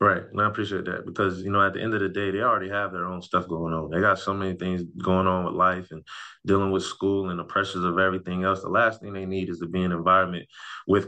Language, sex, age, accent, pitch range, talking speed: English, male, 20-39, American, 85-95 Hz, 285 wpm